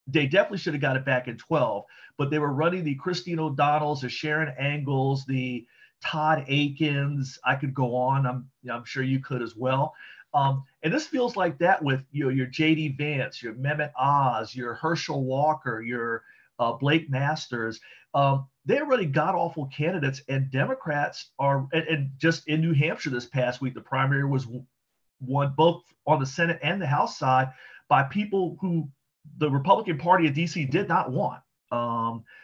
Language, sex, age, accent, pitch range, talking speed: English, male, 40-59, American, 130-160 Hz, 180 wpm